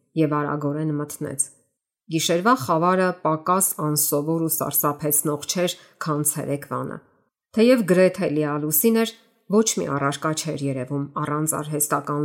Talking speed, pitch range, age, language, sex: 110 wpm, 145-175 Hz, 30-49, English, female